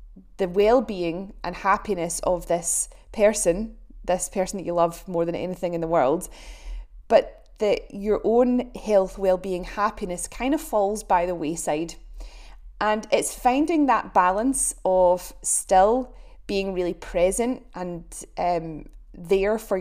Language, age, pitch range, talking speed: English, 20-39, 180-220 Hz, 135 wpm